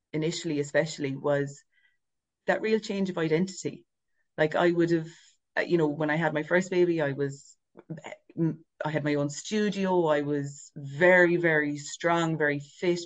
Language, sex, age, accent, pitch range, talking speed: English, female, 30-49, Irish, 150-185 Hz, 155 wpm